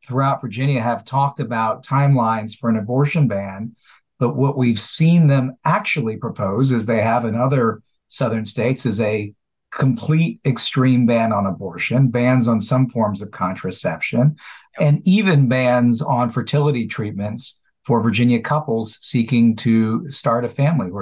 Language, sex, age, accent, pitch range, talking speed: English, male, 50-69, American, 110-135 Hz, 150 wpm